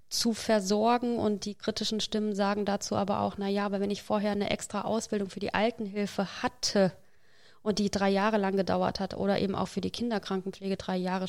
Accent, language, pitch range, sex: German, German, 190-215 Hz, female